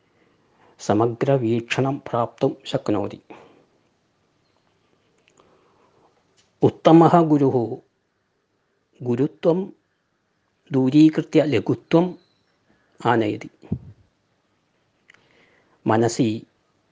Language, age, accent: Malayalam, 50-69, native